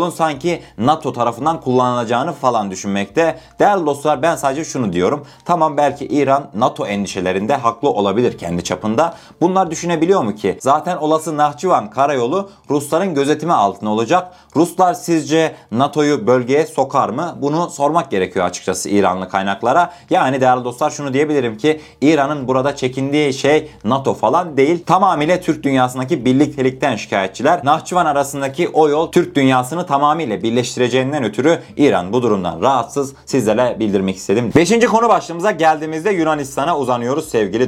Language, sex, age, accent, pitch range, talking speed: Turkish, male, 30-49, native, 125-175 Hz, 135 wpm